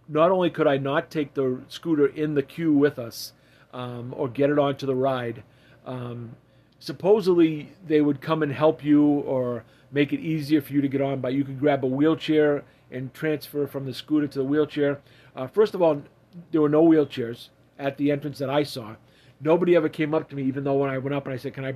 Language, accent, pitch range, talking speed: English, American, 130-150 Hz, 225 wpm